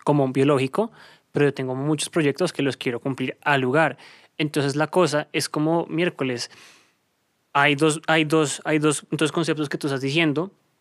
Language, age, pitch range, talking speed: Spanish, 20-39, 135-155 Hz, 180 wpm